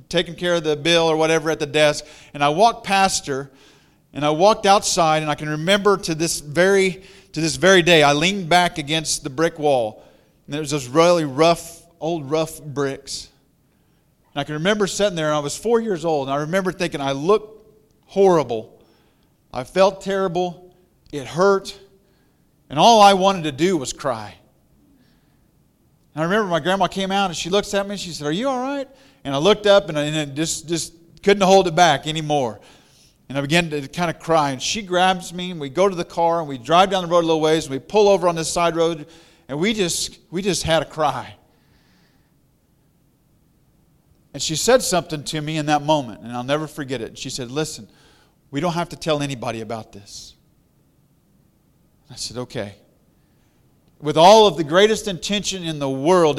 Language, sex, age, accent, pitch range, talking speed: English, male, 40-59, American, 150-185 Hz, 200 wpm